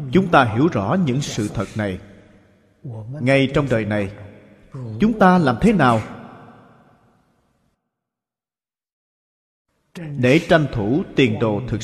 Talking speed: 115 wpm